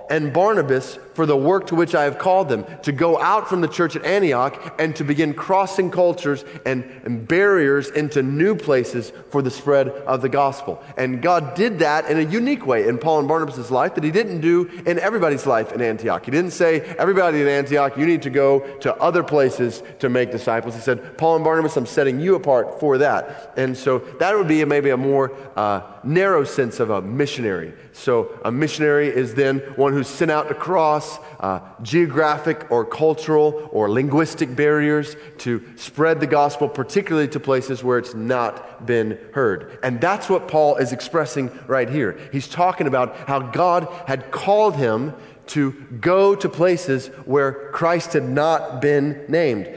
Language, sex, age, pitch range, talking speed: English, male, 30-49, 135-170 Hz, 190 wpm